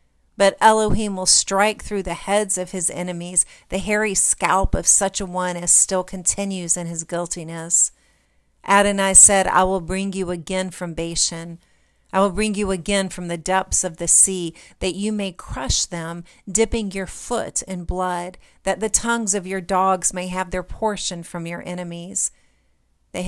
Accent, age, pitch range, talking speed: American, 40-59, 175-200 Hz, 175 wpm